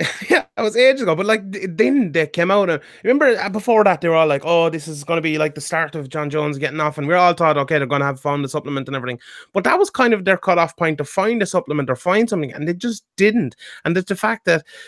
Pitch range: 140-180 Hz